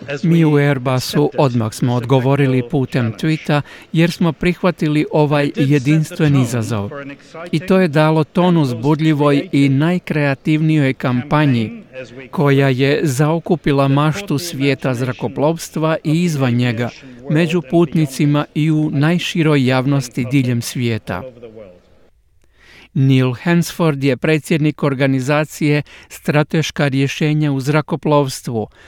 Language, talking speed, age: Croatian, 100 wpm, 50-69